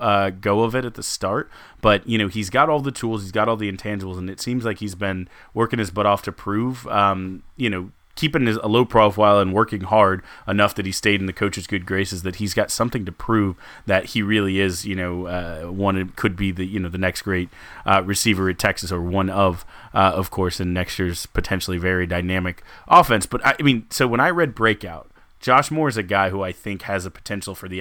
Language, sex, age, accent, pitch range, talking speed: English, male, 30-49, American, 95-110 Hz, 240 wpm